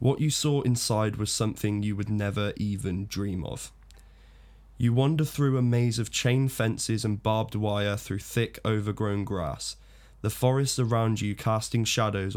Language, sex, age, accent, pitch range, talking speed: English, male, 20-39, British, 105-125 Hz, 160 wpm